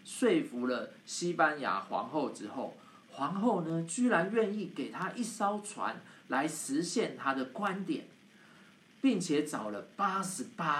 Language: Chinese